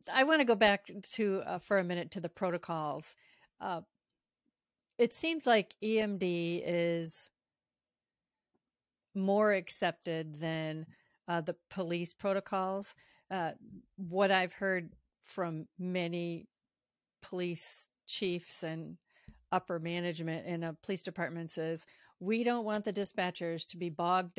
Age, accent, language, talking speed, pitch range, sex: 40-59, American, English, 125 wpm, 170-200 Hz, female